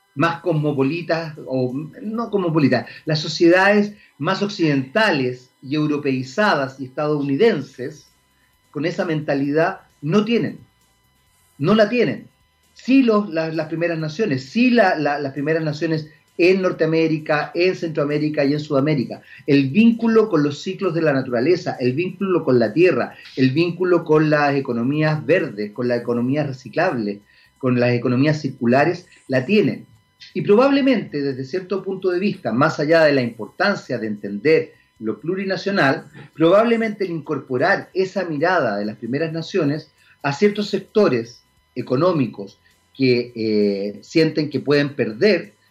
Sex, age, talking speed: male, 40-59, 135 wpm